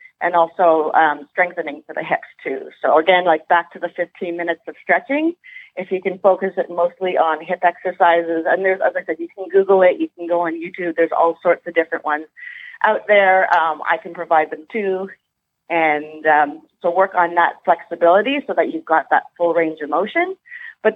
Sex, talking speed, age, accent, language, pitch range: female, 205 wpm, 30-49, American, English, 160-185 Hz